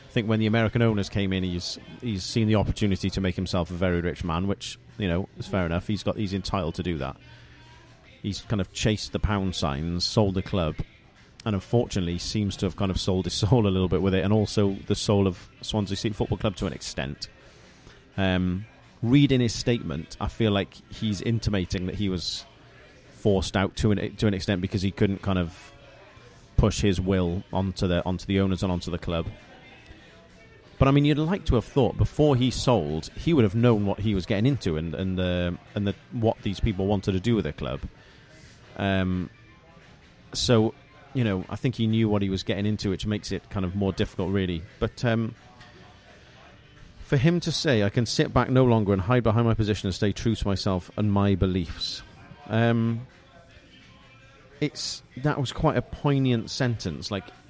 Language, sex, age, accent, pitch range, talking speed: English, male, 30-49, British, 95-115 Hz, 200 wpm